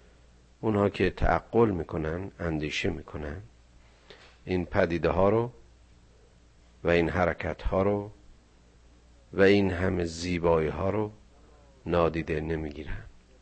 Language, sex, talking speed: Persian, male, 100 wpm